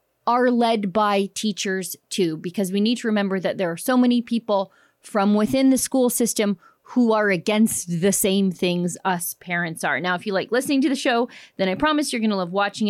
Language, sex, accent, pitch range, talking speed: English, female, American, 195-250 Hz, 215 wpm